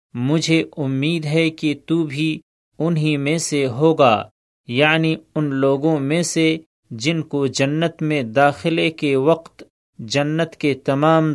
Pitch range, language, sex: 140-160 Hz, Urdu, male